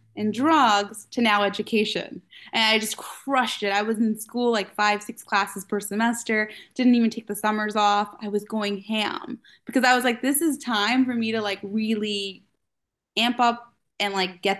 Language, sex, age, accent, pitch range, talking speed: English, female, 20-39, American, 205-250 Hz, 195 wpm